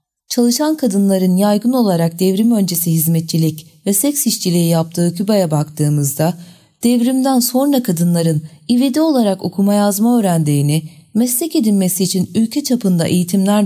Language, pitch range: Turkish, 160-225 Hz